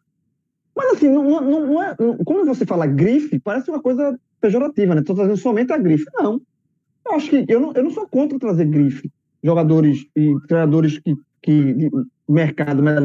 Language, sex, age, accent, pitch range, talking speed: Portuguese, male, 20-39, Brazilian, 150-250 Hz, 180 wpm